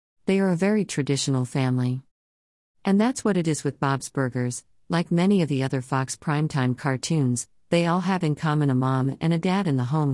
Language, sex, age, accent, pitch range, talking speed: English, female, 50-69, American, 130-165 Hz, 205 wpm